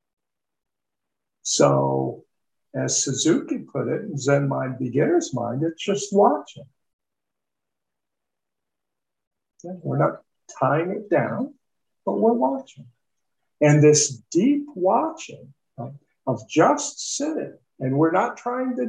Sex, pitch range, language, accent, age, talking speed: male, 165-260 Hz, English, American, 50-69, 110 wpm